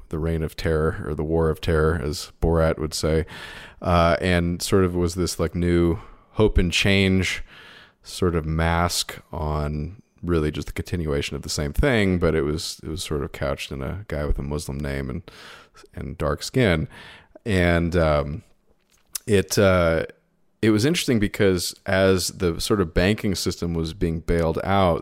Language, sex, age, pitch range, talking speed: English, male, 30-49, 80-95 Hz, 175 wpm